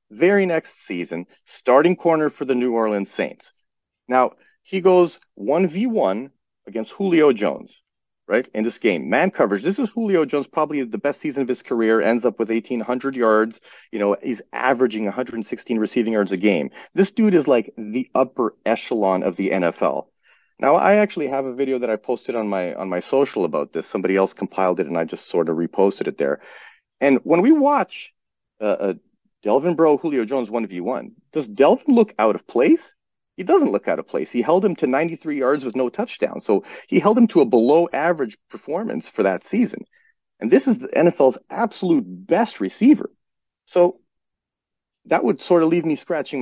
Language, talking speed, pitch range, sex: English, 195 wpm, 115-190 Hz, male